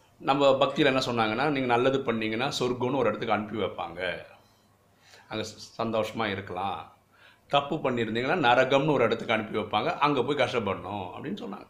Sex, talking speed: male, 140 wpm